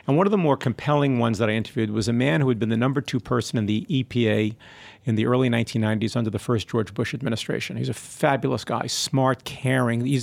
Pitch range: 115-150 Hz